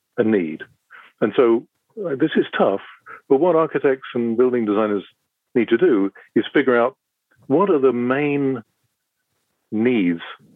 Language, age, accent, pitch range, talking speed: English, 50-69, British, 100-130 Hz, 140 wpm